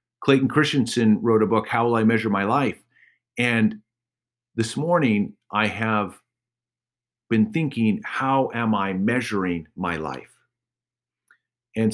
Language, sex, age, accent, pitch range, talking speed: English, male, 40-59, American, 95-120 Hz, 125 wpm